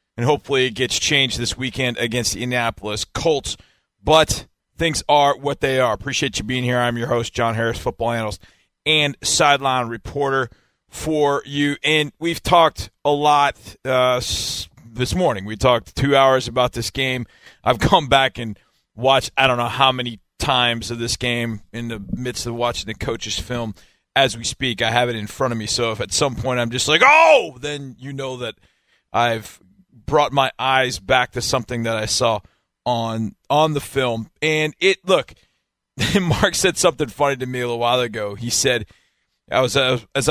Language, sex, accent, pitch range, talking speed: English, male, American, 120-145 Hz, 190 wpm